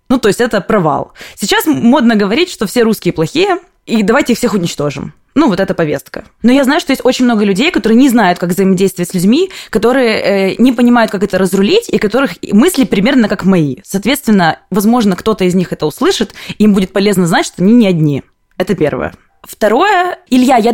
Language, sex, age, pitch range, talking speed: Russian, female, 20-39, 185-250 Hz, 205 wpm